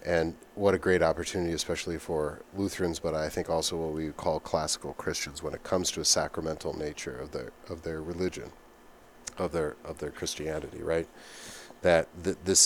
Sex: male